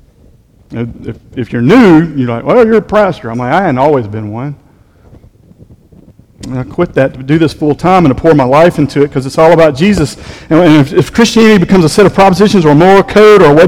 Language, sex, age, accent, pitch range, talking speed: English, male, 40-59, American, 130-180 Hz, 230 wpm